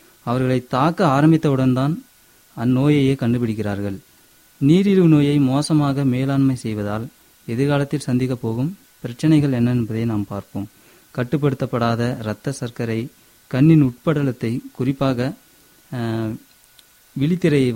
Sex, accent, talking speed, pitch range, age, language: male, native, 90 wpm, 120-150 Hz, 30-49, Tamil